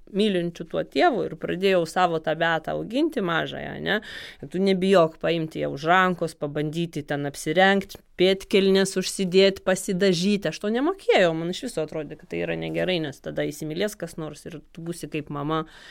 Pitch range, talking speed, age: 160-195 Hz, 165 wpm, 20-39